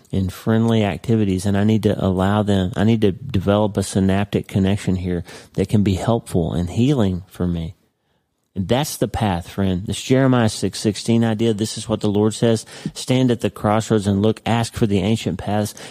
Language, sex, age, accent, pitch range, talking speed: English, male, 40-59, American, 95-110 Hz, 195 wpm